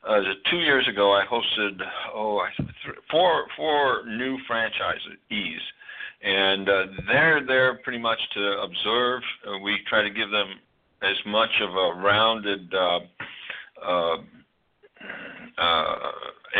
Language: English